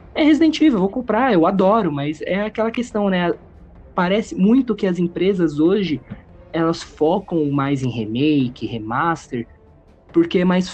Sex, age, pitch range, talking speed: male, 20-39, 145-200 Hz, 155 wpm